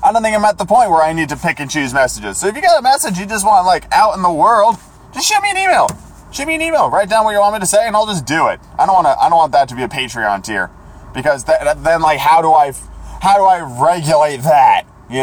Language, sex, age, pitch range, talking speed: English, male, 20-39, 140-220 Hz, 305 wpm